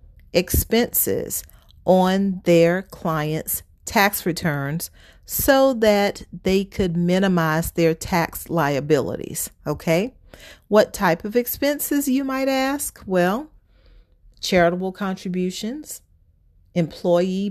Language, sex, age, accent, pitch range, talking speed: English, female, 40-59, American, 170-220 Hz, 90 wpm